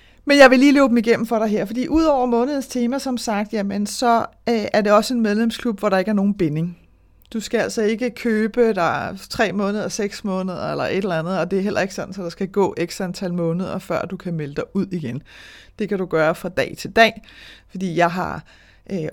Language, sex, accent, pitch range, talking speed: Danish, female, native, 175-225 Hz, 240 wpm